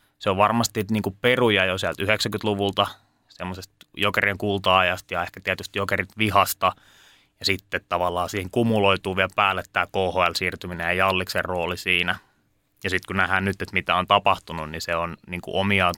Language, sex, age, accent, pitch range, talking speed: Finnish, male, 20-39, native, 95-105 Hz, 160 wpm